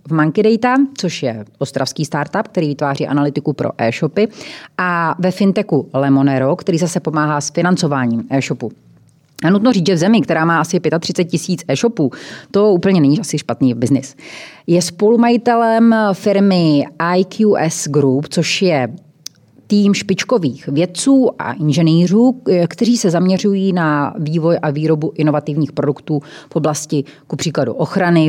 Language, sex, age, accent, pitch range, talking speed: Czech, female, 30-49, native, 145-195 Hz, 140 wpm